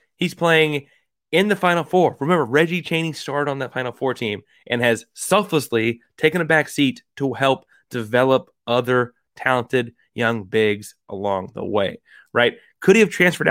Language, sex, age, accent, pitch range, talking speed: English, male, 30-49, American, 115-155 Hz, 165 wpm